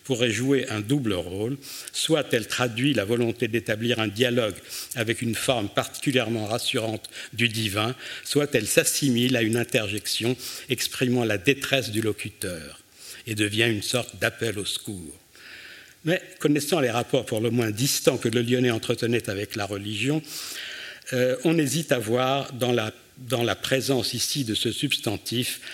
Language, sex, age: French, male, 60-79